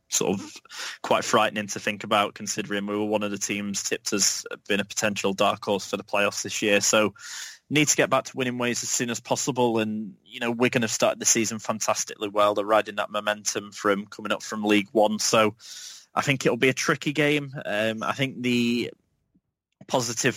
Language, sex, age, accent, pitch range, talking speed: English, male, 20-39, British, 100-120 Hz, 210 wpm